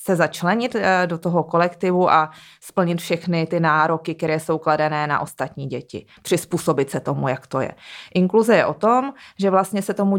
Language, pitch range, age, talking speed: Czech, 155-180 Hz, 20-39, 170 wpm